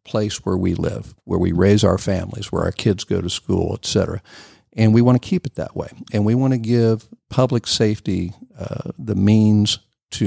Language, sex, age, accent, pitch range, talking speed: English, male, 50-69, American, 95-120 Hz, 205 wpm